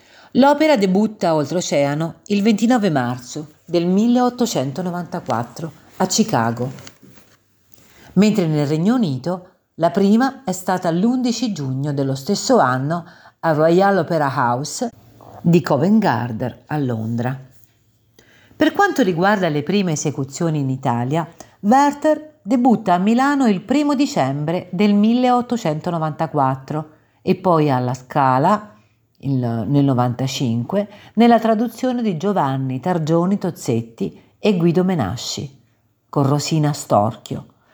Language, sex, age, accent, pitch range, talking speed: Italian, female, 50-69, native, 135-205 Hz, 110 wpm